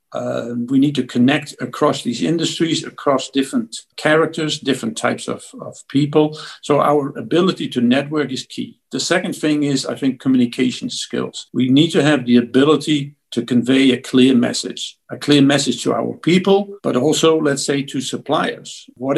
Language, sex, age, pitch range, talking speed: English, male, 60-79, 130-155 Hz, 170 wpm